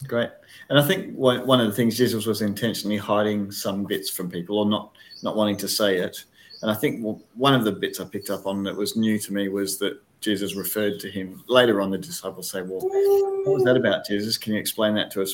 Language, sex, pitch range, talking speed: English, male, 100-120 Hz, 245 wpm